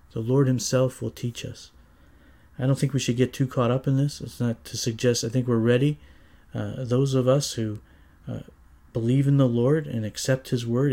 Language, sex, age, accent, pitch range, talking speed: English, male, 40-59, American, 110-130 Hz, 215 wpm